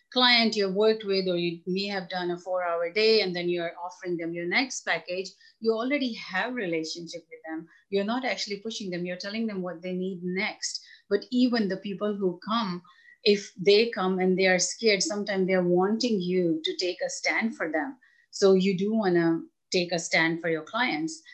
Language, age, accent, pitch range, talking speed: English, 30-49, Indian, 165-205 Hz, 210 wpm